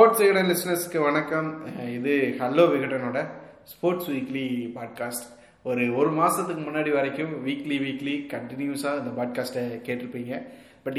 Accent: native